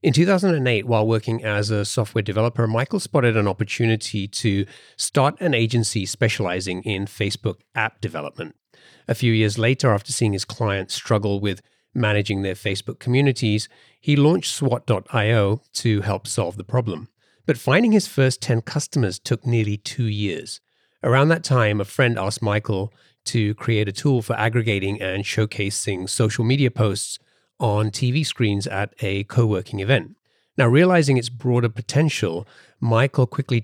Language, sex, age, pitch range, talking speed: English, male, 30-49, 105-125 Hz, 150 wpm